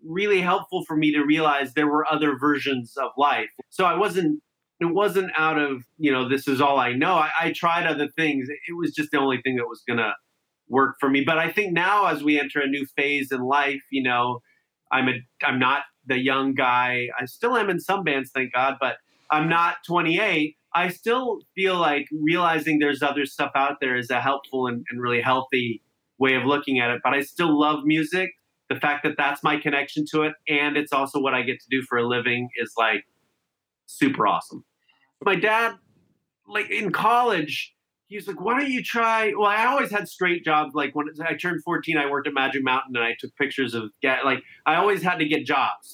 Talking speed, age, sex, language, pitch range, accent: 215 wpm, 30-49, male, English, 135-165 Hz, American